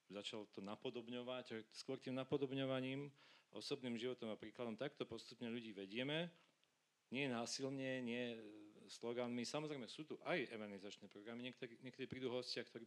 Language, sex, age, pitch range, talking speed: Slovak, male, 40-59, 110-130 Hz, 125 wpm